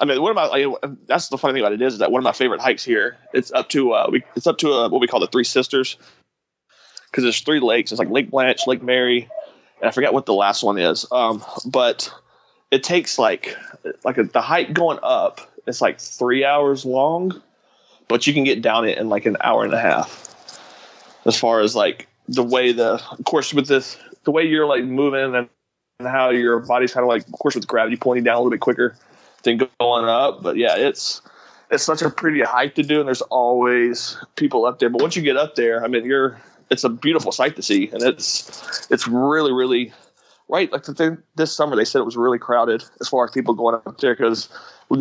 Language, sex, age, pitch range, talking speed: English, male, 30-49, 120-140 Hz, 240 wpm